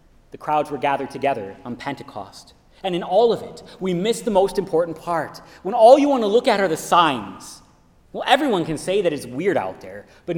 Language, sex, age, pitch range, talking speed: English, male, 30-49, 150-240 Hz, 220 wpm